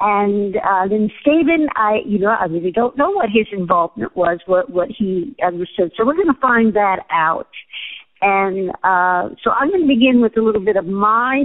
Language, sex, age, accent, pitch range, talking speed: English, female, 60-79, American, 195-250 Hz, 195 wpm